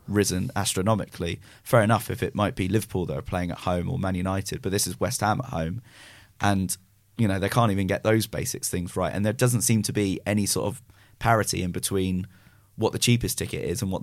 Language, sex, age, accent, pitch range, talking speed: English, male, 20-39, British, 95-120 Hz, 230 wpm